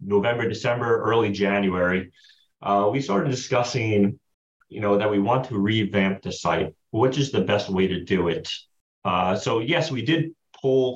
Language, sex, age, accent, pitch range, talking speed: English, male, 30-49, American, 100-130 Hz, 170 wpm